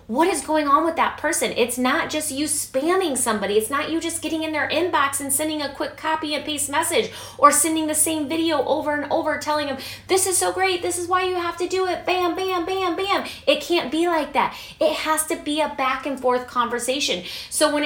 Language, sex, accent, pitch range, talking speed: English, female, American, 280-355 Hz, 240 wpm